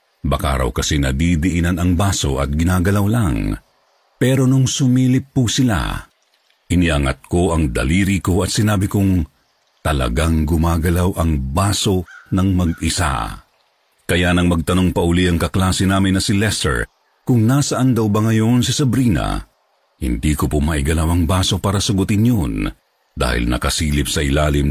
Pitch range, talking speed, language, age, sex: 80-110 Hz, 140 wpm, Filipino, 50-69, male